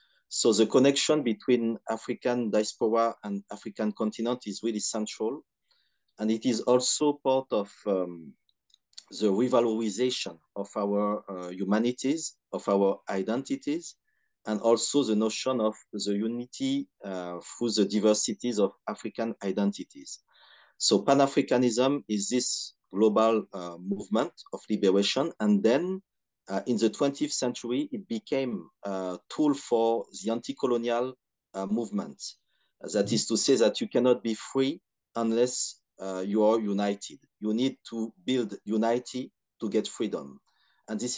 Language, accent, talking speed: English, French, 135 wpm